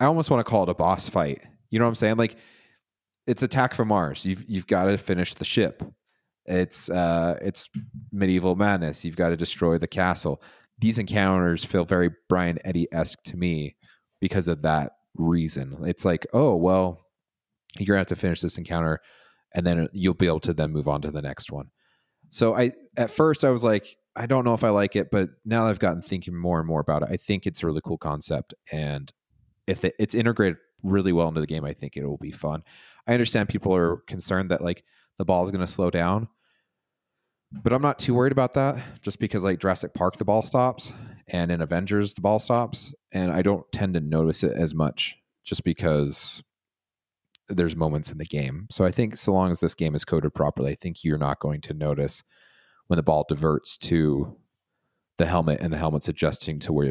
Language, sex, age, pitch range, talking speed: English, male, 30-49, 80-105 Hz, 215 wpm